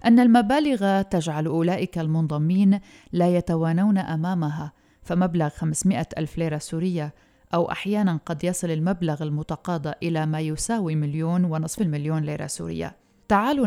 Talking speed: 125 wpm